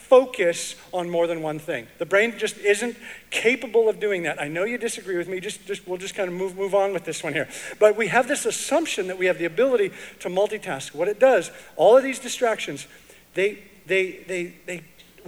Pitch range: 175-230 Hz